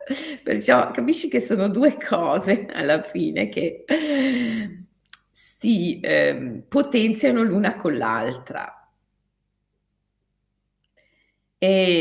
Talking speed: 80 wpm